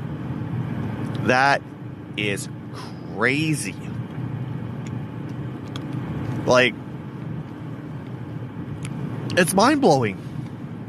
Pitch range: 130-145 Hz